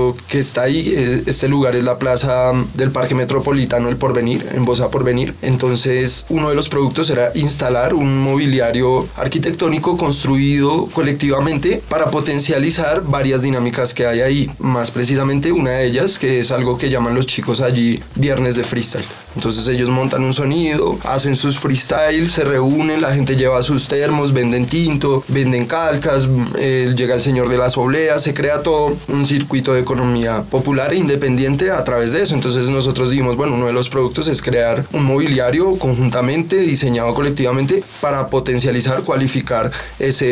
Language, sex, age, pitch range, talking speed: Spanish, male, 20-39, 125-145 Hz, 160 wpm